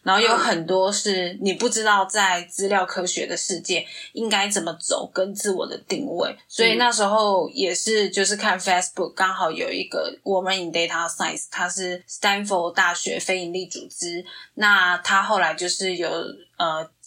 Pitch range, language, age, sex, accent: 175-205 Hz, Chinese, 20-39, female, native